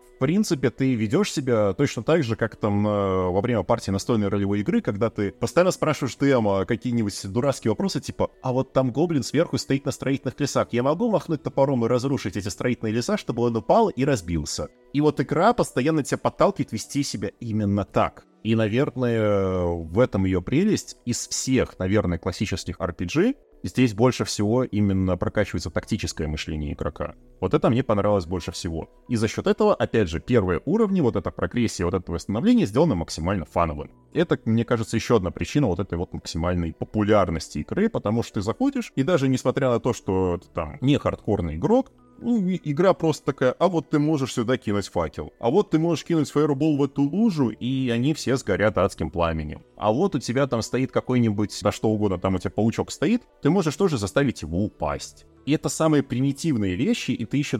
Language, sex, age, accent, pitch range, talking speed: Russian, male, 20-39, native, 100-140 Hz, 190 wpm